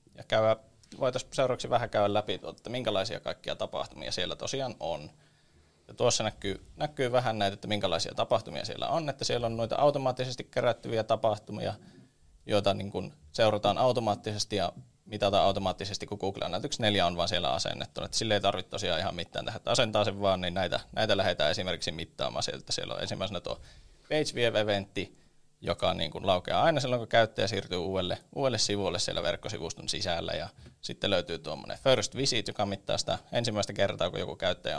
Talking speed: 175 wpm